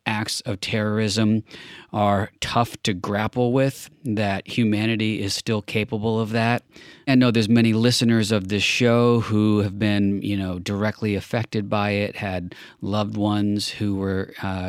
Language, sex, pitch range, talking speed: English, male, 100-115 Hz, 155 wpm